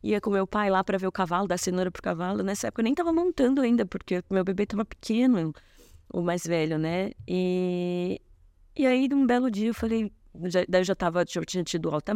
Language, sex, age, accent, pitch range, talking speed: Portuguese, female, 20-39, Brazilian, 170-225 Hz, 230 wpm